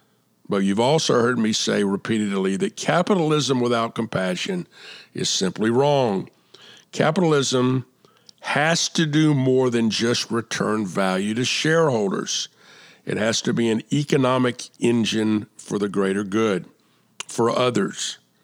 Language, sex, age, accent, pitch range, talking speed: English, male, 50-69, American, 105-140 Hz, 125 wpm